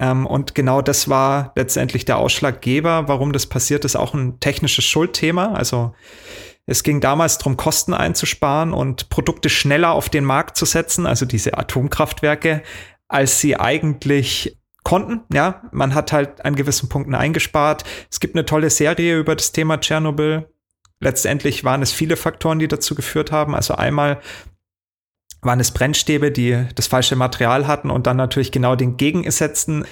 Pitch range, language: 130-155 Hz, German